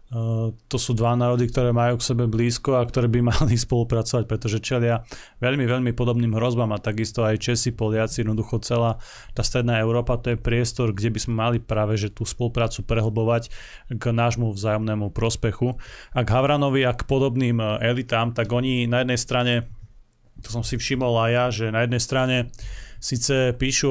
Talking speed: 175 wpm